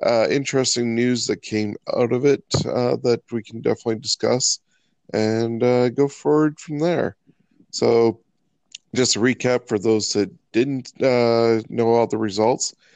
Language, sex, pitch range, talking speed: English, male, 110-125 Hz, 155 wpm